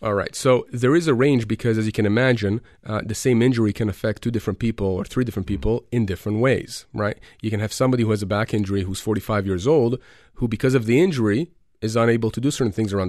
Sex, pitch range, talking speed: male, 110-135 Hz, 250 wpm